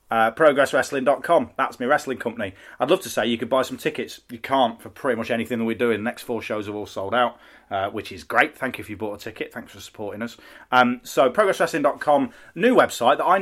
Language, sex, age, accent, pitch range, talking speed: English, male, 30-49, British, 110-135 Hz, 240 wpm